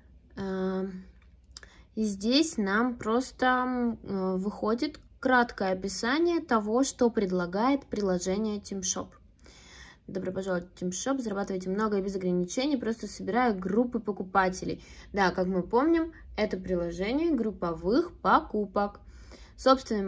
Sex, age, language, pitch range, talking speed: female, 20-39, Russian, 185-230 Hz, 100 wpm